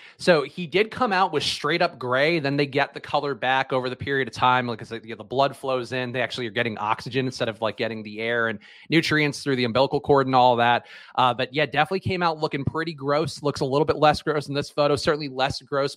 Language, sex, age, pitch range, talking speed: English, male, 30-49, 125-160 Hz, 265 wpm